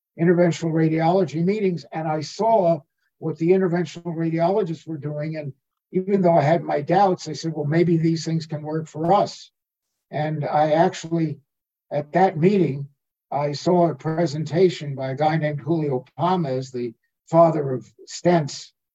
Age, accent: 60-79, American